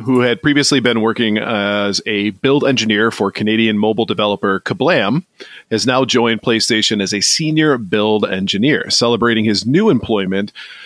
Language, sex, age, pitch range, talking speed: English, male, 30-49, 110-140 Hz, 150 wpm